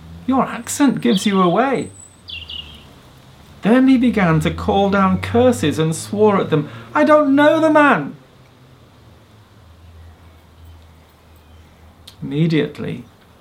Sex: male